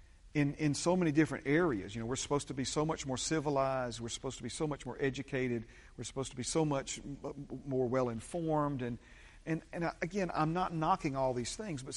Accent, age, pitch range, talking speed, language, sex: American, 40-59, 120-150 Hz, 220 wpm, English, male